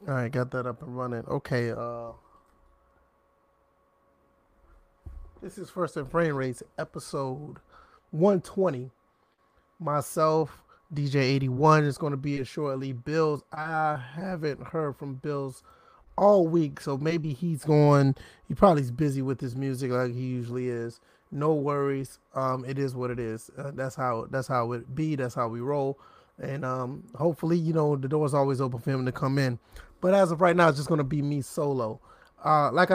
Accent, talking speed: American, 180 wpm